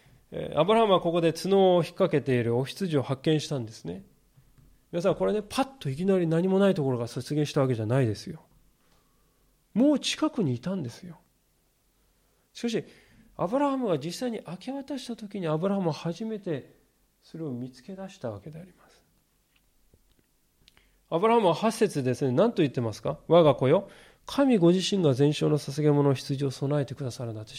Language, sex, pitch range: Japanese, male, 135-190 Hz